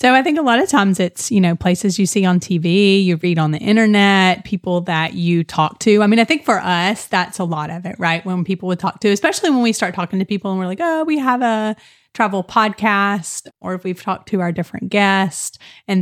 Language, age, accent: English, 30-49, American